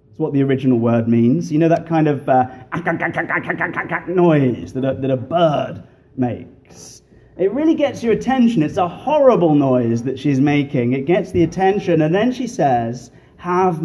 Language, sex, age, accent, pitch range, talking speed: English, male, 30-49, British, 125-165 Hz, 165 wpm